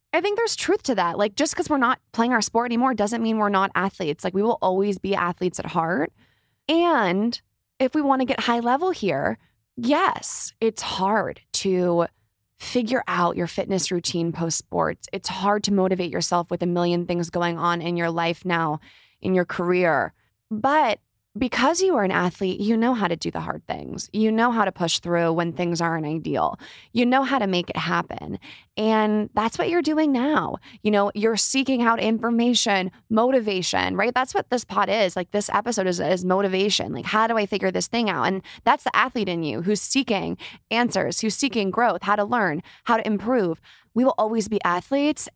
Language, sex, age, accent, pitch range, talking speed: English, female, 20-39, American, 180-235 Hz, 200 wpm